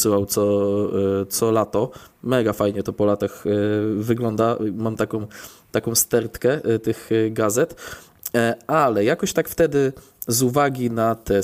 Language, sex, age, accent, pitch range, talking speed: Polish, male, 20-39, native, 110-130 Hz, 120 wpm